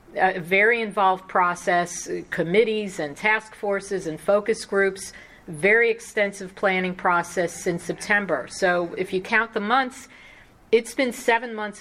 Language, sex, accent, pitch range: English, female, American, 170-195 Hz